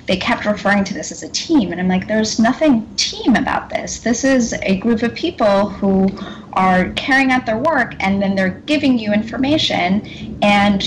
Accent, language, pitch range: American, English, 185-230 Hz